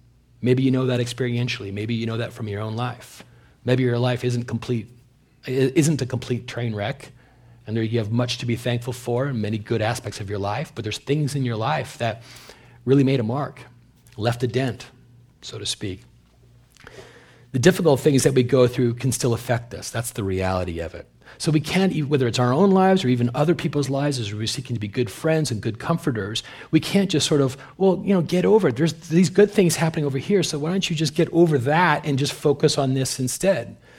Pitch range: 120-155 Hz